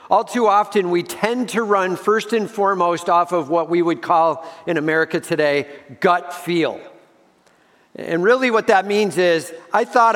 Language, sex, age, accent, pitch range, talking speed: English, male, 50-69, American, 135-195 Hz, 170 wpm